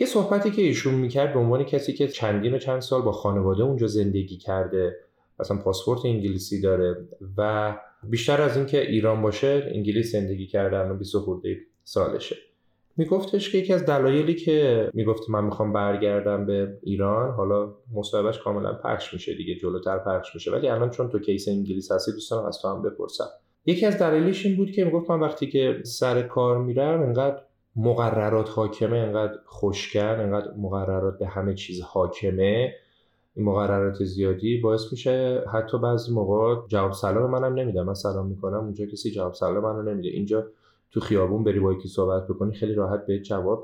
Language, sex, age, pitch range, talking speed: Persian, male, 30-49, 100-125 Hz, 170 wpm